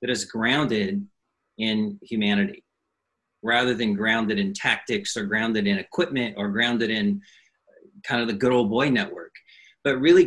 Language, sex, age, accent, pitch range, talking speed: English, male, 40-59, American, 115-170 Hz, 150 wpm